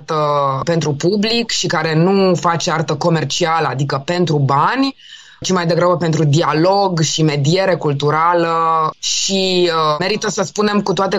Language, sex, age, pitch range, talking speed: Romanian, female, 20-39, 160-205 Hz, 135 wpm